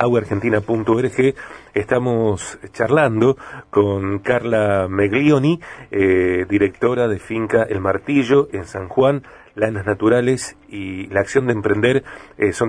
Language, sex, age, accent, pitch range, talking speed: Spanish, male, 40-59, Argentinian, 105-130 Hz, 115 wpm